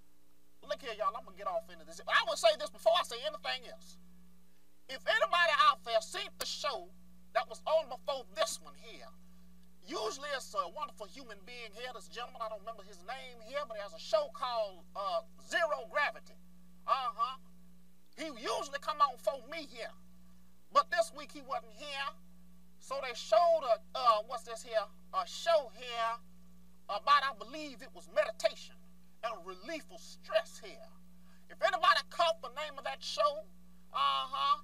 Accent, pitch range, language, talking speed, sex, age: American, 180-295 Hz, English, 175 wpm, male, 40-59